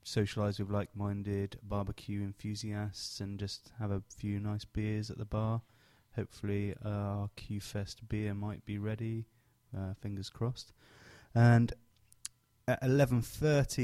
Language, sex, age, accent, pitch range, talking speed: English, male, 20-39, British, 105-120 Hz, 115 wpm